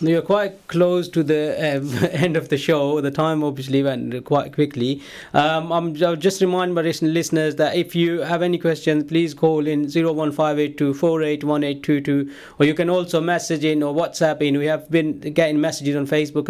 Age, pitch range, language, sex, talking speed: 20-39, 140-165 Hz, English, male, 180 wpm